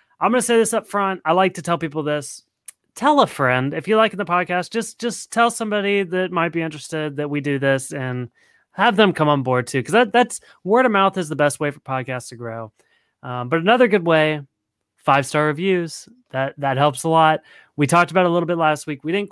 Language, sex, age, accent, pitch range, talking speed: English, male, 30-49, American, 135-175 Hz, 245 wpm